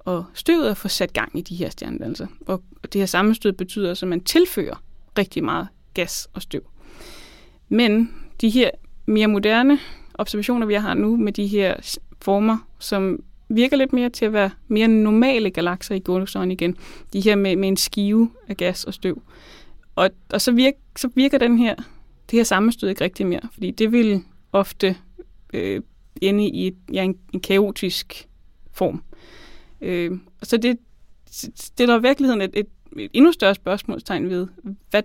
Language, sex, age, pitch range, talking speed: Danish, female, 20-39, 185-230 Hz, 160 wpm